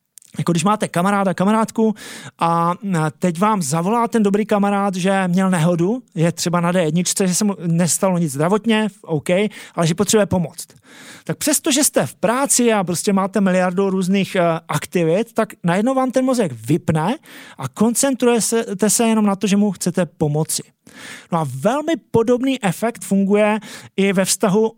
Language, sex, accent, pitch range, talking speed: Czech, male, native, 170-225 Hz, 165 wpm